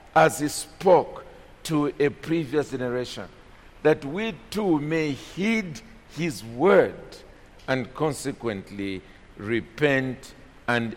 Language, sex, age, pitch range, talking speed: English, male, 50-69, 120-175 Hz, 100 wpm